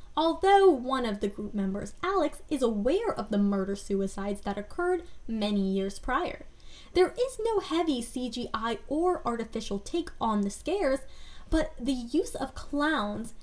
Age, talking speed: 10-29, 150 wpm